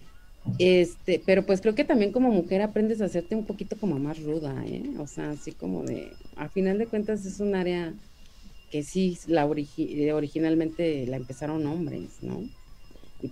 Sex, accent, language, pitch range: female, Mexican, Spanish, 155-215 Hz